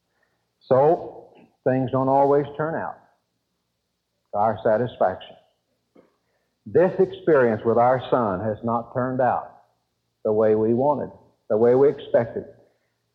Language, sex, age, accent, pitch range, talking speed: English, male, 60-79, American, 110-140 Hz, 120 wpm